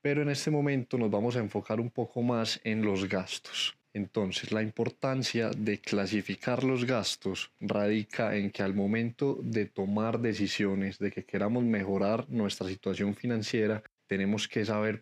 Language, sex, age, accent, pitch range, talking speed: Spanish, male, 20-39, Colombian, 100-120 Hz, 155 wpm